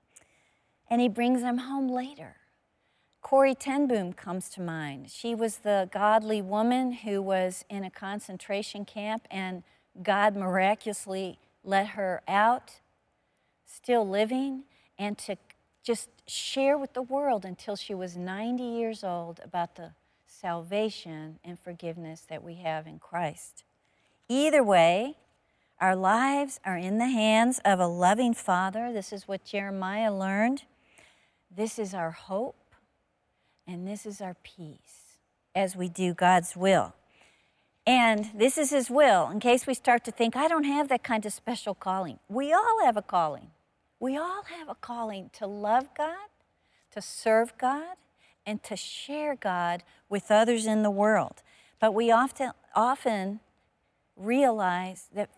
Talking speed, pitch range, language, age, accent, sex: 145 wpm, 185-240 Hz, English, 50-69, American, female